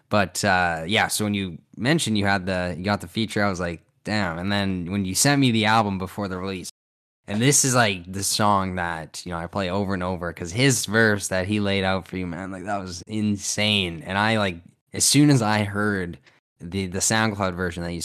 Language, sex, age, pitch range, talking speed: English, male, 10-29, 85-105 Hz, 235 wpm